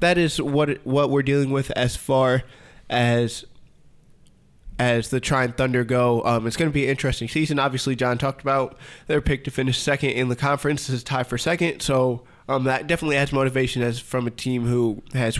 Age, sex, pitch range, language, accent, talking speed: 20-39, male, 115-140 Hz, English, American, 205 wpm